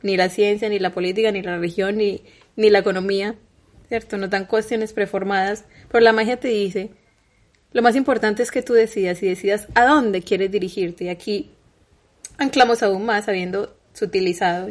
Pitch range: 190-225 Hz